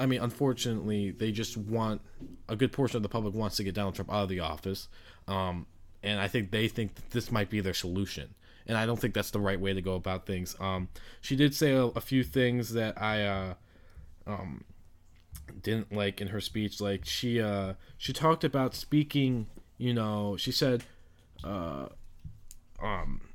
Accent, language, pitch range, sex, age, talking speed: American, English, 95-120 Hz, male, 20-39, 190 wpm